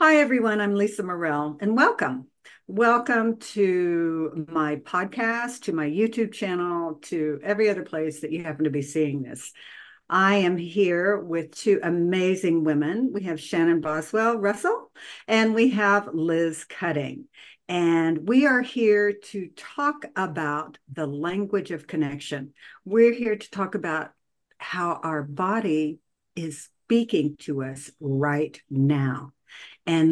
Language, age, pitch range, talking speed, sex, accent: English, 60-79, 155-215 Hz, 135 wpm, female, American